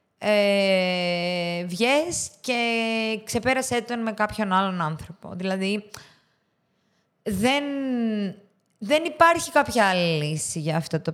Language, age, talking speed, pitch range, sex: Greek, 20-39, 100 wpm, 180-245 Hz, female